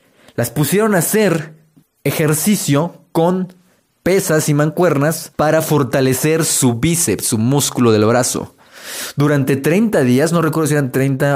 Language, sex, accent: Spanish, male, Mexican